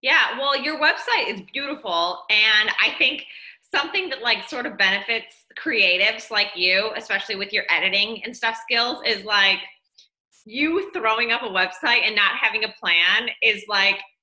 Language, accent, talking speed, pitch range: English, American, 165 wpm, 190-235 Hz